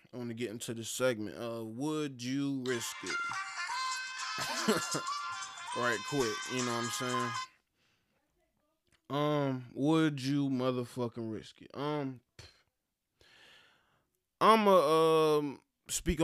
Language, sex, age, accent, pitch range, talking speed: English, male, 20-39, American, 115-145 Hz, 115 wpm